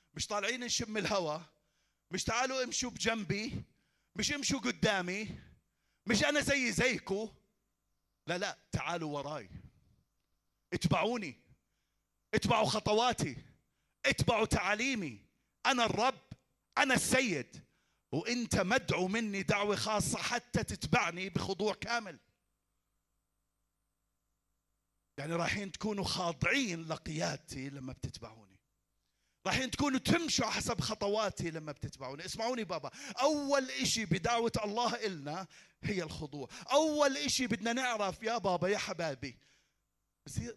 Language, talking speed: Arabic, 100 wpm